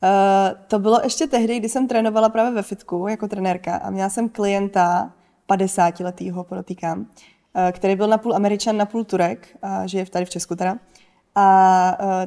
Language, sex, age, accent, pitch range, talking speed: Czech, female, 20-39, native, 190-230 Hz, 160 wpm